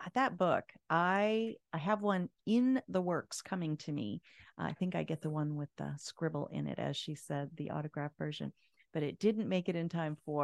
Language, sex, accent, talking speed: English, female, American, 220 wpm